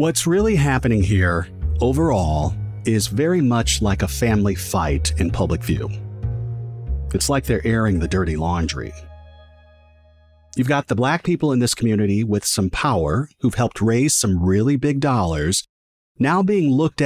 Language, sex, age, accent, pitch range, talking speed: English, male, 50-69, American, 95-145 Hz, 150 wpm